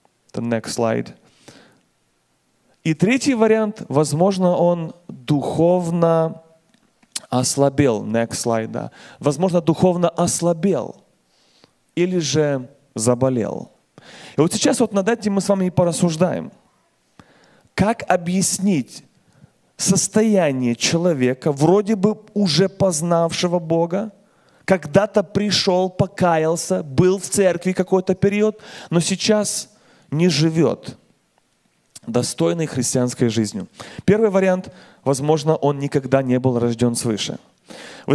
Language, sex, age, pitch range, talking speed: Russian, male, 30-49, 145-190 Hz, 100 wpm